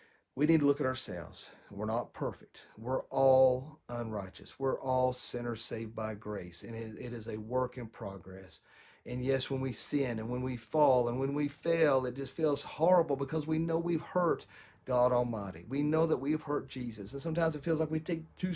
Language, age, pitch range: English, 40-59, 105-145 Hz